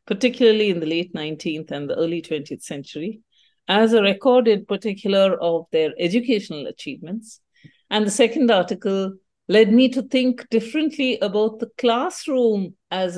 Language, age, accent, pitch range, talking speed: English, 50-69, Indian, 175-230 Hz, 145 wpm